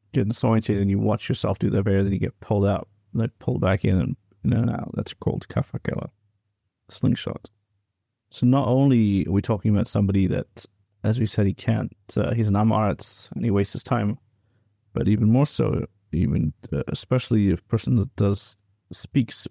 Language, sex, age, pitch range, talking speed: English, male, 30-49, 100-115 Hz, 190 wpm